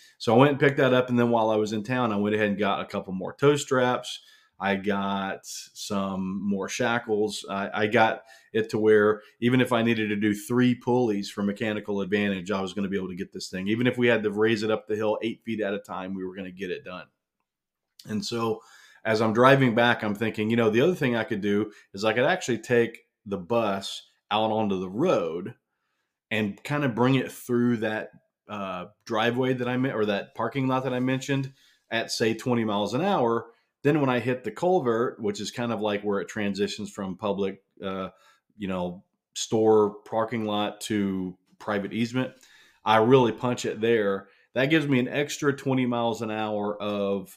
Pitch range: 100-125 Hz